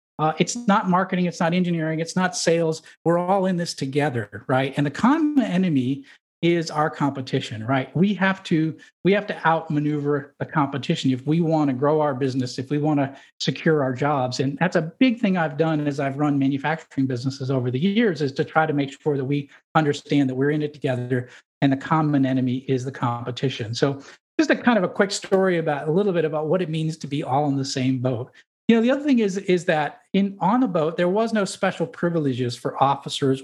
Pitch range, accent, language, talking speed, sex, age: 135-175 Hz, American, English, 225 wpm, male, 50-69